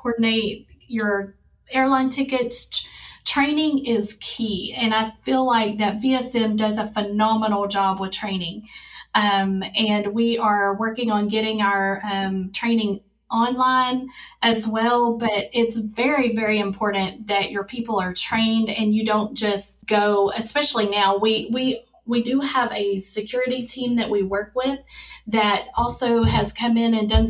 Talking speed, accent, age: 150 wpm, American, 30-49